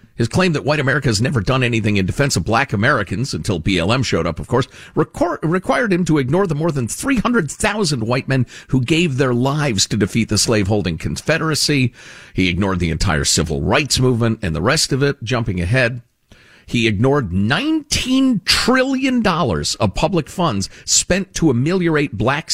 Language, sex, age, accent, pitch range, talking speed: English, male, 50-69, American, 100-155 Hz, 170 wpm